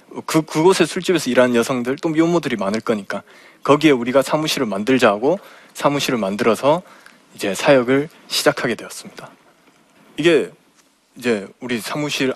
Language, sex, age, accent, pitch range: Korean, male, 20-39, native, 130-165 Hz